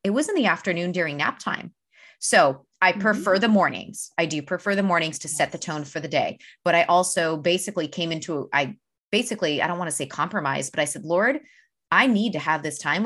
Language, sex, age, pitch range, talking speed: English, female, 20-39, 155-195 Hz, 225 wpm